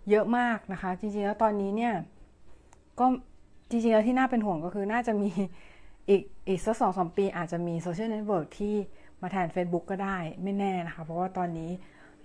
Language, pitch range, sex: Thai, 180-225 Hz, female